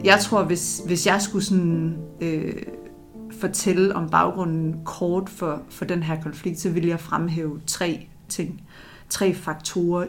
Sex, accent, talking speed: female, native, 150 wpm